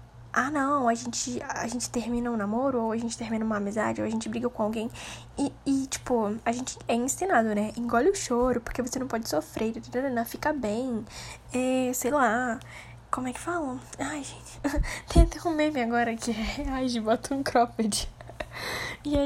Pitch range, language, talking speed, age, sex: 230-275 Hz, Portuguese, 190 wpm, 10-29, female